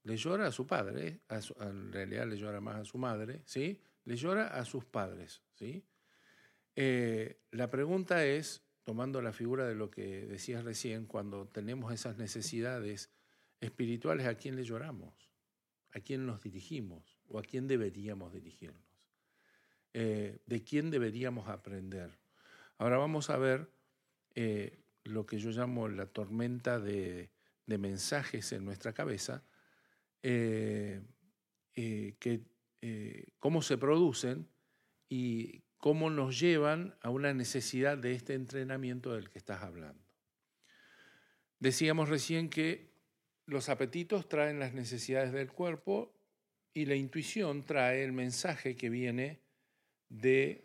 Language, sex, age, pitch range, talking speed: Spanish, male, 50-69, 110-140 Hz, 130 wpm